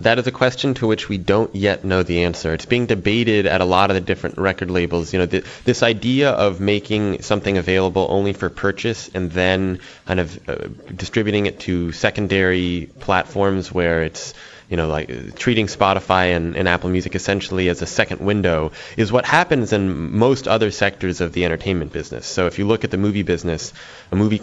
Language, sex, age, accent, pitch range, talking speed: English, male, 20-39, American, 90-105 Hz, 200 wpm